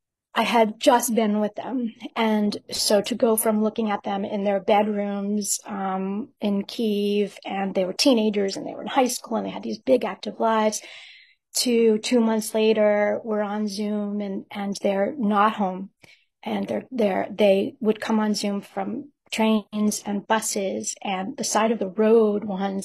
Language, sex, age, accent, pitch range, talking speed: English, female, 40-59, American, 195-225 Hz, 180 wpm